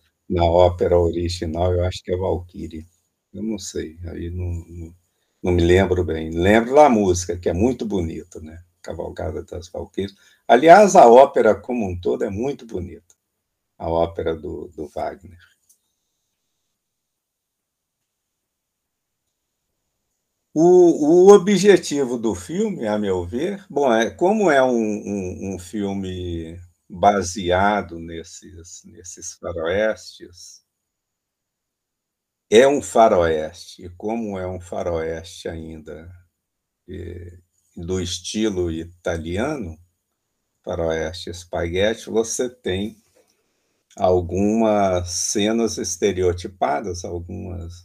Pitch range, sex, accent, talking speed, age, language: 85-110 Hz, male, Brazilian, 105 wpm, 50-69, Portuguese